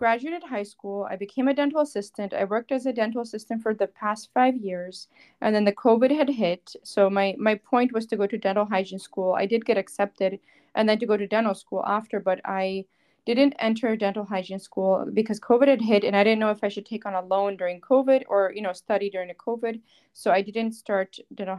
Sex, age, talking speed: female, 20-39, 235 wpm